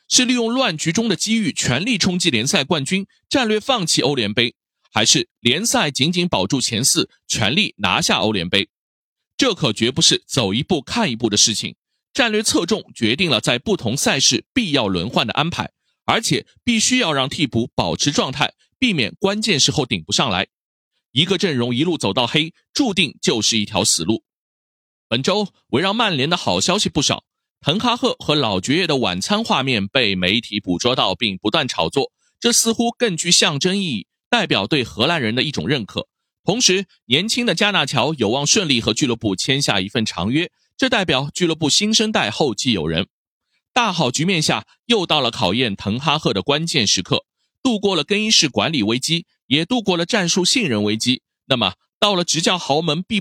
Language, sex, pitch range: Chinese, male, 130-215 Hz